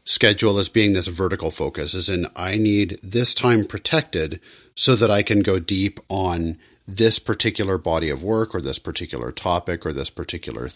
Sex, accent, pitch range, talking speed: male, American, 85-105 Hz, 180 wpm